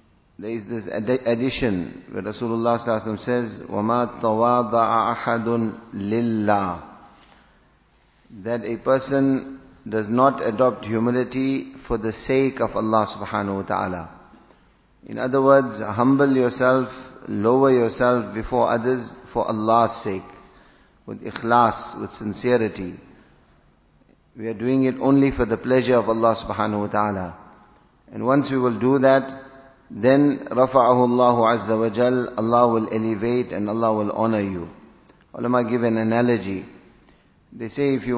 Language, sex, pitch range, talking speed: English, male, 110-125 Hz, 130 wpm